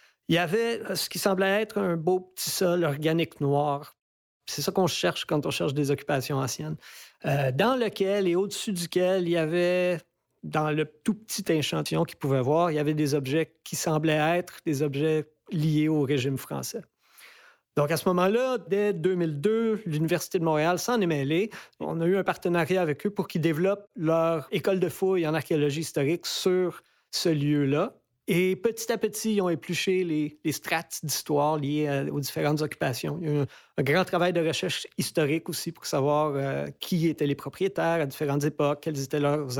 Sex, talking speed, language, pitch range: male, 190 wpm, French, 145-185 Hz